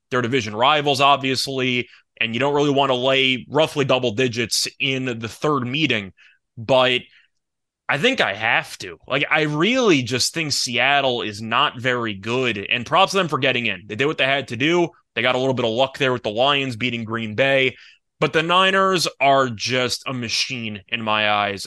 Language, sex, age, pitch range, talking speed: English, male, 20-39, 120-150 Hz, 200 wpm